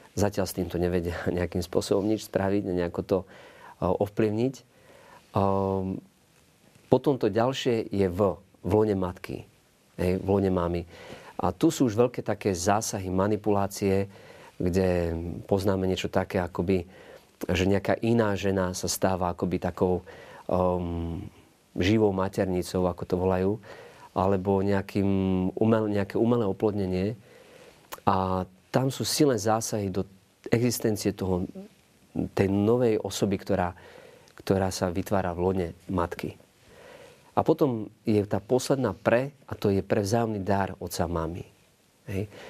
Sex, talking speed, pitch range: male, 125 wpm, 95-110 Hz